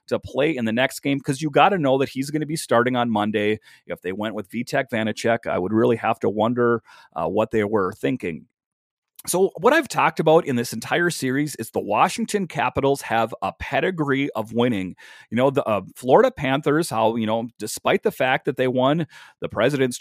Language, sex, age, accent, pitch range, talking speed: English, male, 30-49, American, 120-165 Hz, 215 wpm